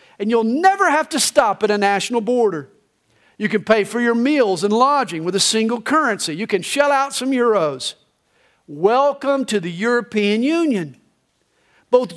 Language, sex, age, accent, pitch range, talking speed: English, male, 50-69, American, 175-265 Hz, 170 wpm